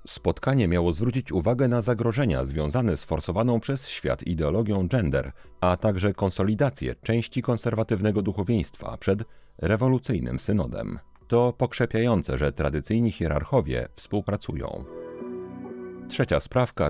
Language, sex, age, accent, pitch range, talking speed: Polish, male, 40-59, native, 85-125 Hz, 105 wpm